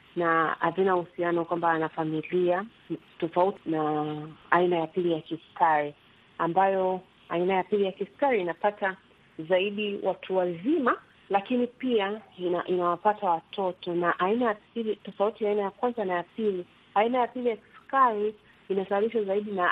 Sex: female